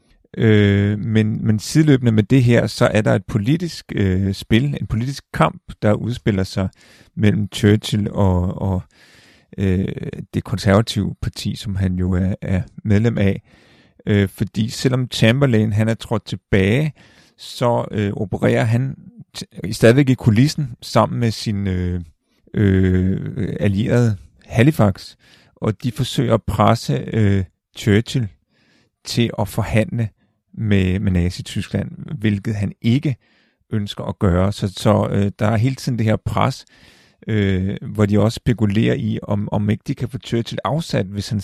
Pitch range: 100-120 Hz